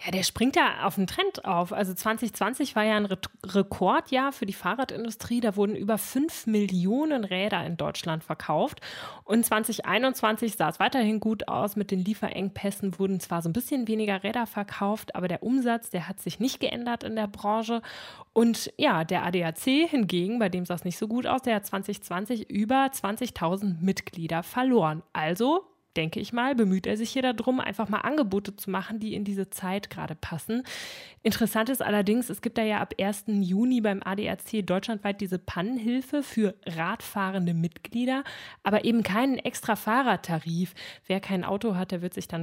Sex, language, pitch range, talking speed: female, German, 180-230 Hz, 180 wpm